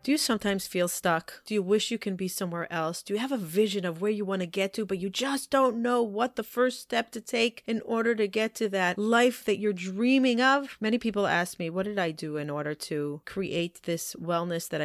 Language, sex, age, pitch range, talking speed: English, female, 30-49, 175-220 Hz, 250 wpm